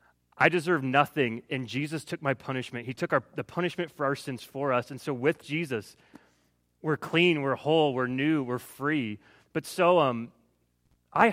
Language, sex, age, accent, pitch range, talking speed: English, male, 30-49, American, 125-190 Hz, 180 wpm